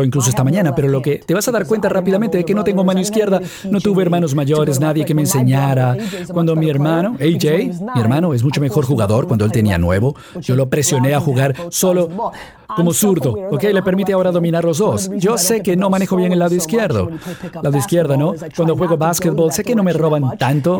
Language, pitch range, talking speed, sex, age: Spanish, 135-185 Hz, 220 wpm, male, 50-69